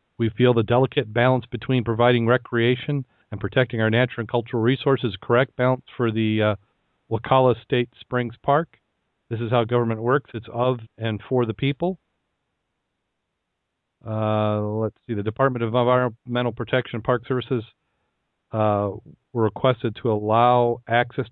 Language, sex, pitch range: English, male, 115-130 Hz